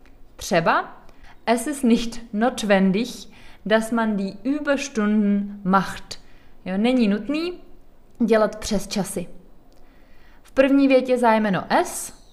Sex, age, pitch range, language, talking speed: female, 20-39, 190-240 Hz, Czech, 100 wpm